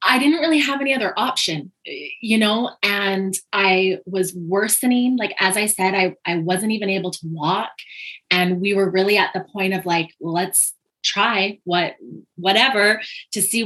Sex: female